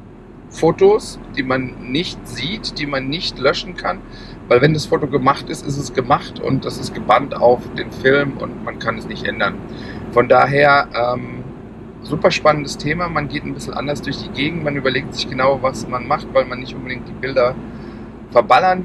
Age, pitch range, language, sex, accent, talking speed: 40-59, 120-145 Hz, German, male, German, 190 wpm